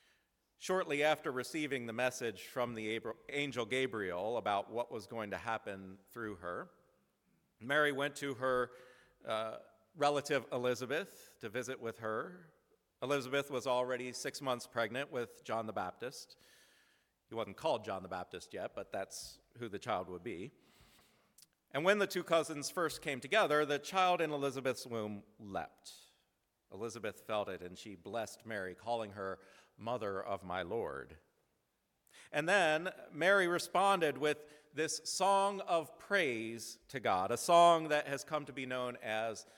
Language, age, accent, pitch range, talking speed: English, 40-59, American, 115-150 Hz, 150 wpm